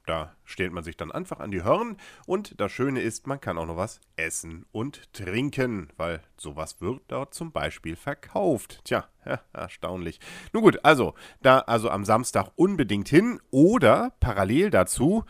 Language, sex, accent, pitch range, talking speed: German, male, German, 95-135 Hz, 165 wpm